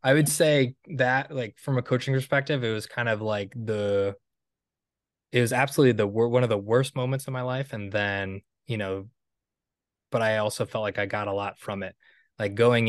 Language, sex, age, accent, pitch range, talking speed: English, male, 20-39, American, 105-125 Hz, 205 wpm